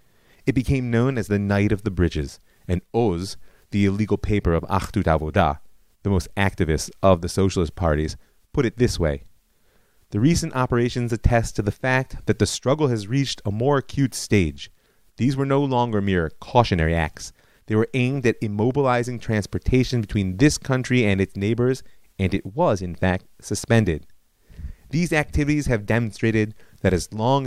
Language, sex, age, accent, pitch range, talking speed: English, male, 30-49, American, 90-120 Hz, 165 wpm